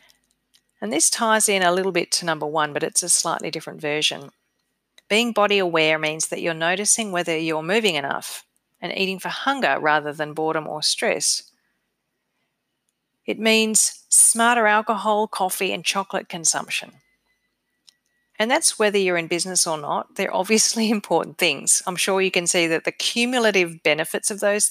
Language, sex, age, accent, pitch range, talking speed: English, female, 40-59, Australian, 160-215 Hz, 165 wpm